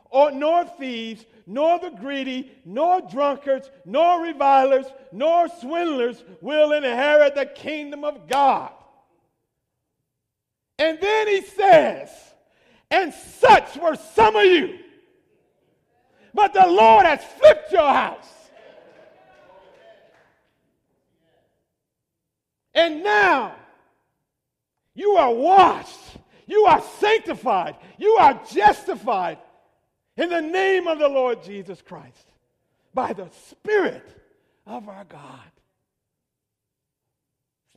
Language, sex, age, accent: English, male, 50-69, American